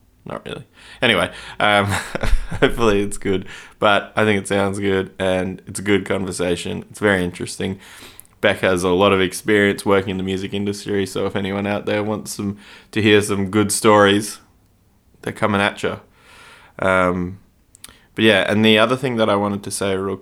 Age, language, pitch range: 20-39, English, 95-110 Hz